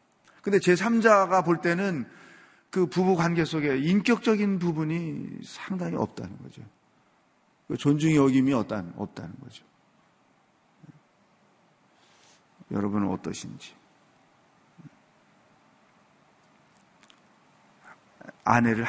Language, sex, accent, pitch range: Korean, male, native, 110-160 Hz